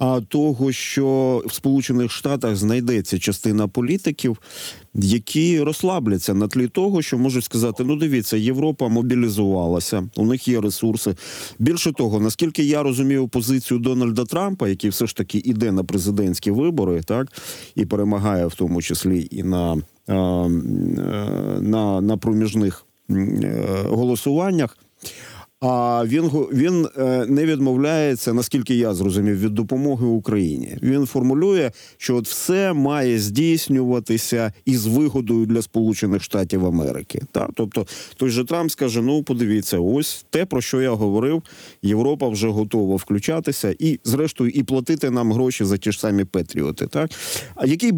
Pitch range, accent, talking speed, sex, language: 105-135 Hz, native, 135 wpm, male, Ukrainian